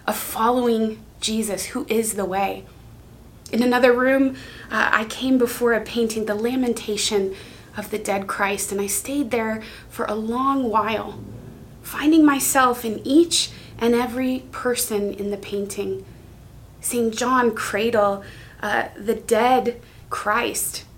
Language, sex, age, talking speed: English, female, 20-39, 135 wpm